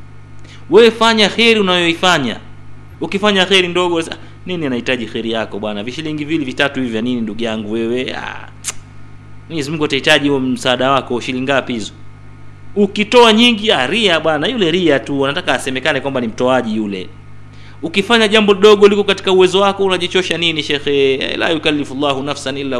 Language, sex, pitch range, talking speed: Swahili, male, 115-185 Hz, 145 wpm